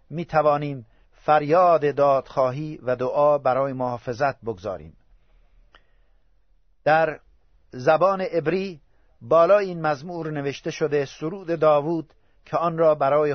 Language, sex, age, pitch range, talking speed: Persian, male, 50-69, 130-160 Hz, 105 wpm